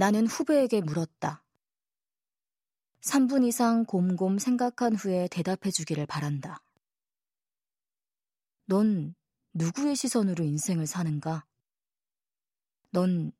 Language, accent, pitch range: Korean, native, 155-205 Hz